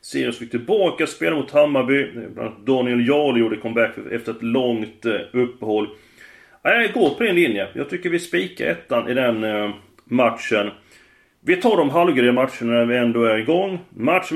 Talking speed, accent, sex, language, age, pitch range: 160 wpm, native, male, Swedish, 30-49, 115-160 Hz